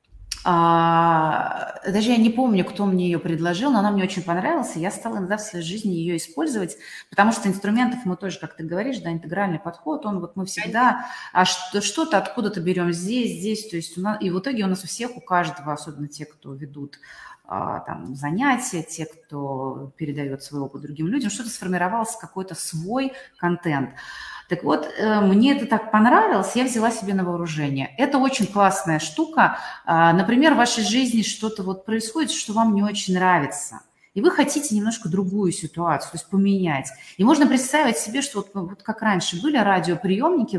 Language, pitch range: Russian, 170-230 Hz